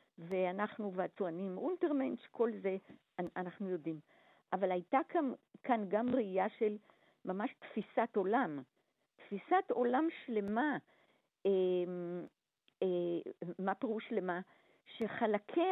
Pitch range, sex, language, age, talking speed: 200-305 Hz, female, Hebrew, 50-69, 95 wpm